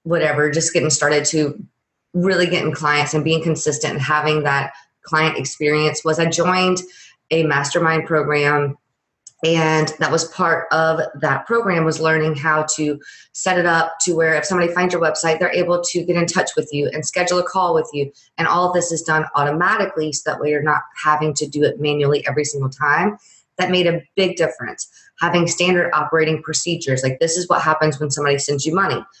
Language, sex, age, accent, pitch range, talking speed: English, female, 20-39, American, 155-185 Hz, 195 wpm